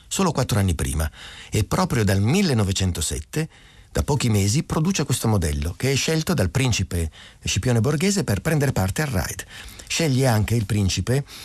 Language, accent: Italian, native